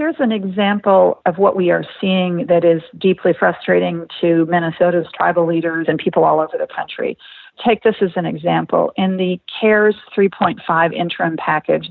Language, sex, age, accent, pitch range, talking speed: English, female, 50-69, American, 170-210 Hz, 165 wpm